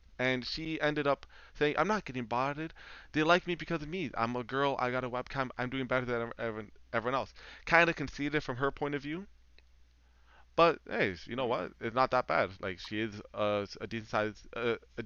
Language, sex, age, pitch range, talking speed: English, male, 20-39, 105-140 Hz, 215 wpm